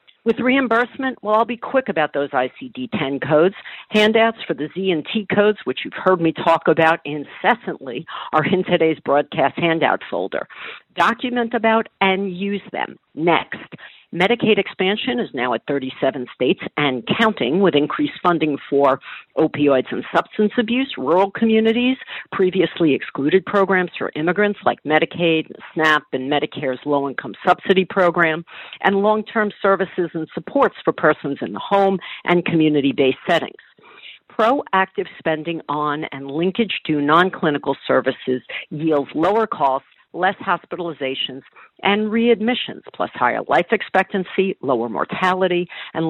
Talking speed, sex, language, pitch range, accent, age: 135 wpm, female, English, 155-215 Hz, American, 50-69